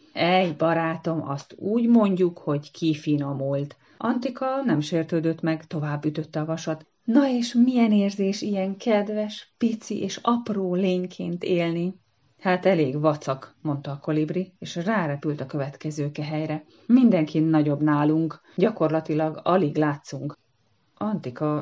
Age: 30-49